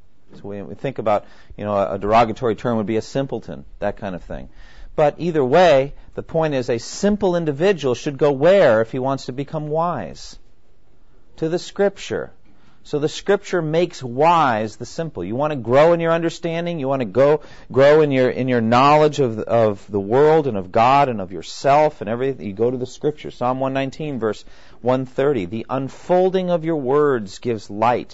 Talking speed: 195 wpm